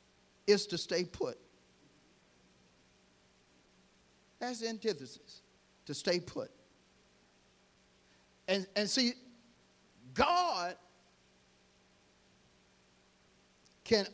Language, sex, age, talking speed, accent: English, male, 50-69, 60 wpm, American